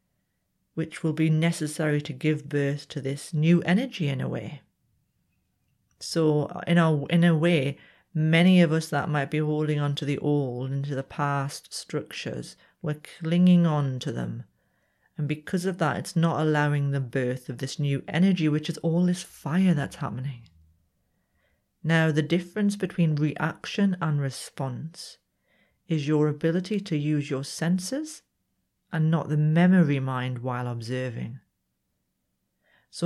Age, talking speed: 40-59, 145 wpm